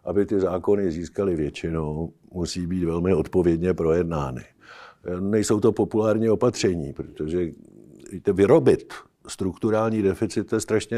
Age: 50-69